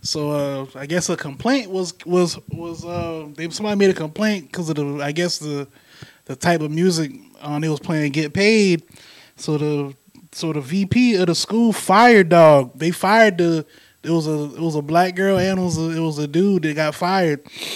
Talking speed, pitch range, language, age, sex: 215 wpm, 145-180 Hz, English, 20-39, male